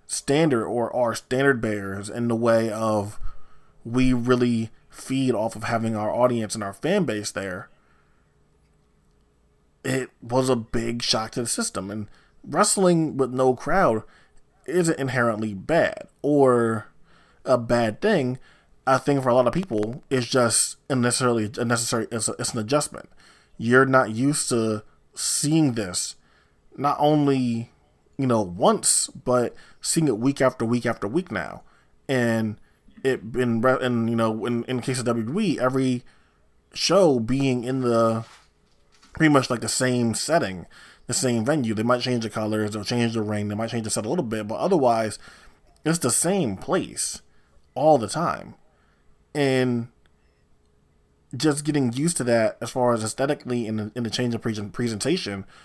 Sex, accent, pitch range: male, American, 110-130 Hz